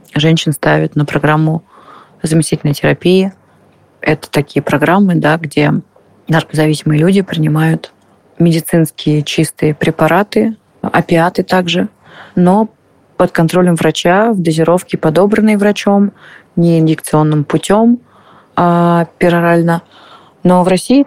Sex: female